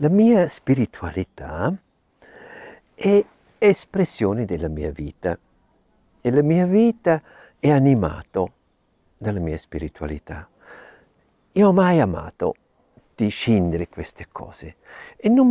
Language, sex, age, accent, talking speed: Italian, male, 60-79, native, 100 wpm